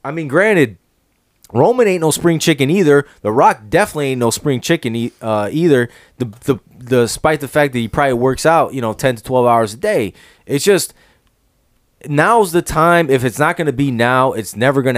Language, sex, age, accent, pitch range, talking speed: English, male, 20-39, American, 120-145 Hz, 210 wpm